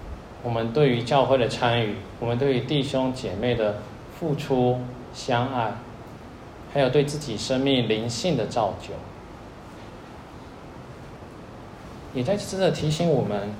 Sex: male